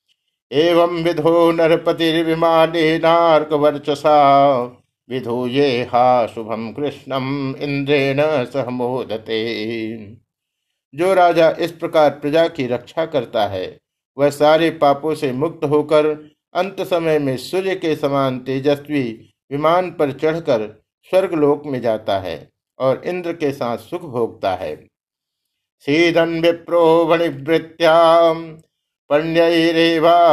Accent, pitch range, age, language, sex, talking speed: native, 130-165 Hz, 50-69, Hindi, male, 95 wpm